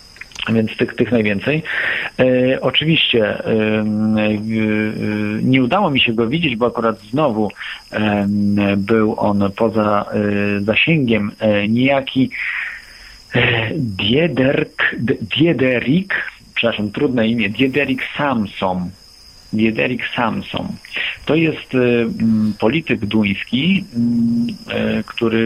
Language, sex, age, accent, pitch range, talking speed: Polish, male, 50-69, native, 105-130 Hz, 95 wpm